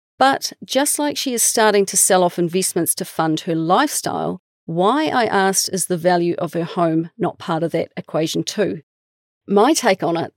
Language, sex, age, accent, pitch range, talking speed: English, female, 40-59, Australian, 170-215 Hz, 190 wpm